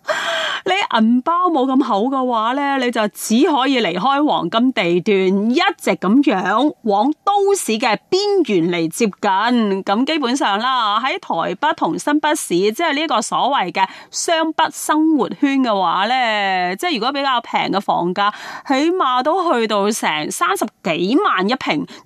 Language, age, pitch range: Chinese, 30-49, 200-315 Hz